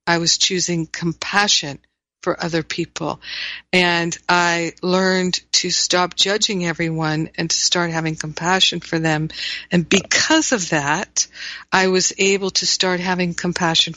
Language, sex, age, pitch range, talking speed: English, female, 50-69, 155-185 Hz, 140 wpm